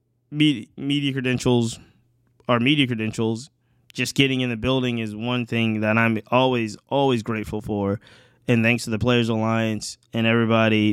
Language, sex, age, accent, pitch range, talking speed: English, male, 20-39, American, 110-125 Hz, 150 wpm